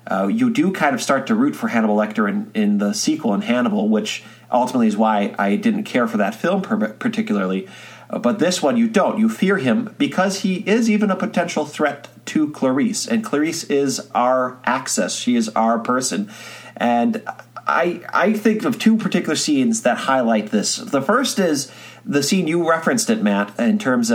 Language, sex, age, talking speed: English, male, 40-59, 190 wpm